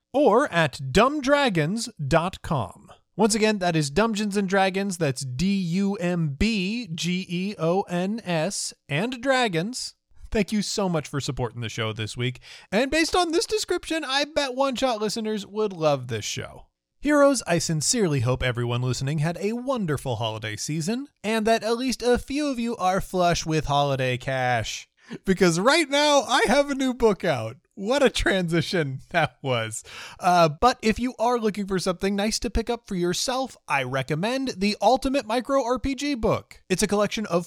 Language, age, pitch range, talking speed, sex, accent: English, 30-49, 155-240 Hz, 160 wpm, male, American